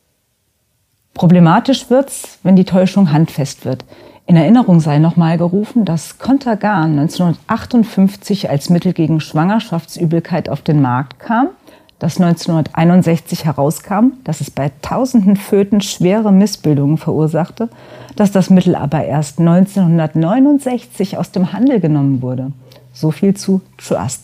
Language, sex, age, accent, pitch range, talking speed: German, female, 40-59, German, 145-195 Hz, 120 wpm